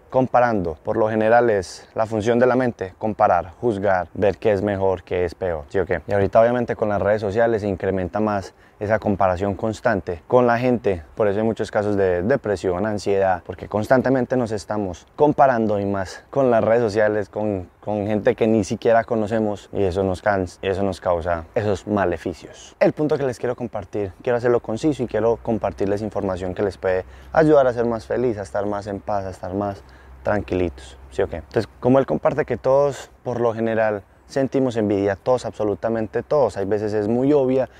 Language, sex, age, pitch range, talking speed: Spanish, male, 20-39, 100-125 Hz, 200 wpm